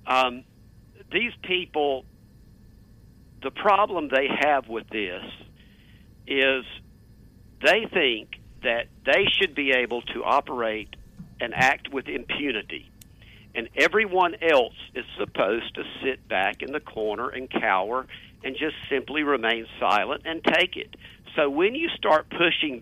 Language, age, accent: English, 50-69, American